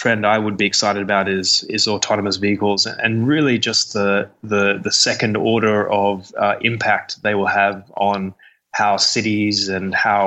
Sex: male